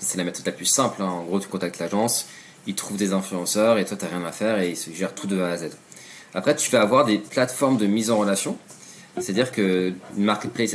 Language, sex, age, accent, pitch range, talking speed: French, male, 20-39, French, 90-115 Hz, 255 wpm